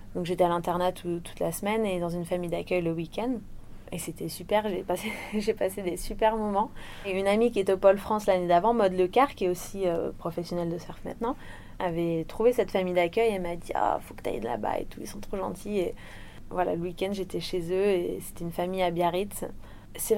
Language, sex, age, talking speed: French, female, 20-39, 245 wpm